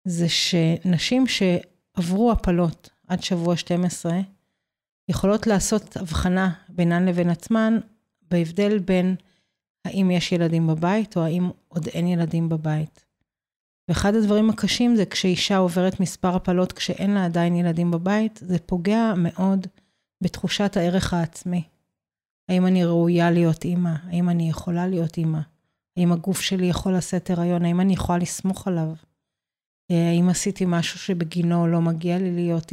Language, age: Hebrew, 30-49